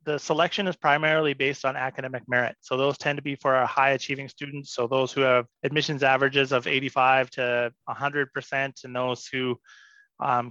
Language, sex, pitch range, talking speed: English, male, 130-160 Hz, 185 wpm